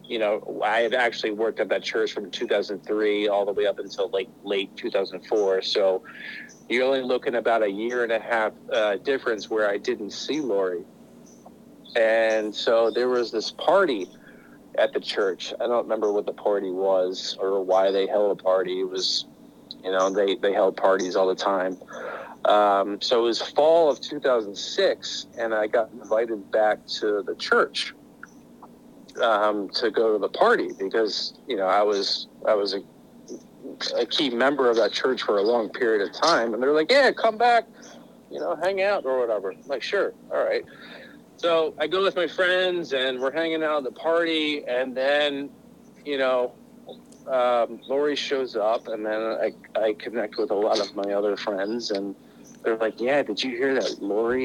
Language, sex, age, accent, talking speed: English, male, 50-69, American, 185 wpm